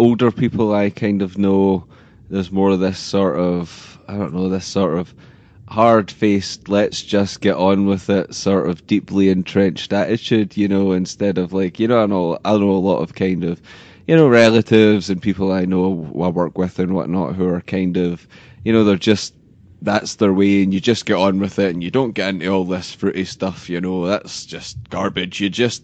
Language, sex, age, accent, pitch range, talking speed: English, male, 20-39, British, 95-115 Hz, 200 wpm